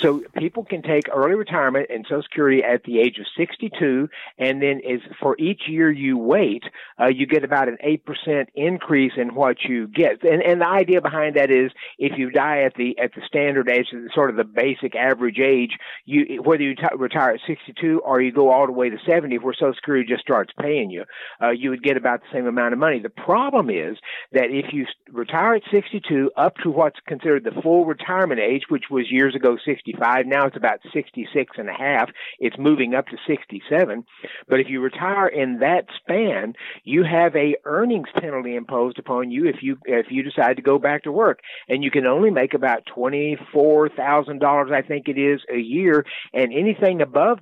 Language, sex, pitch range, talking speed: English, male, 130-160 Hz, 205 wpm